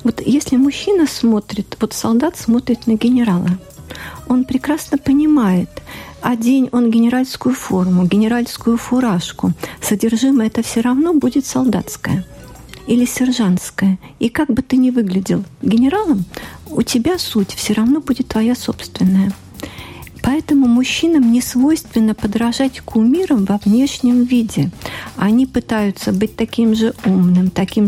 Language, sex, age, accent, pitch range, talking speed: Russian, female, 50-69, native, 205-255 Hz, 125 wpm